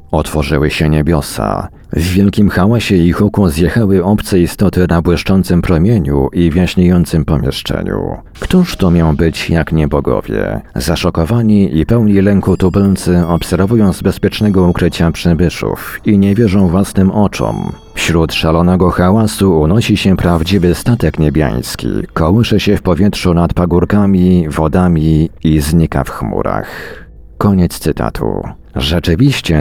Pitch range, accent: 80-100 Hz, native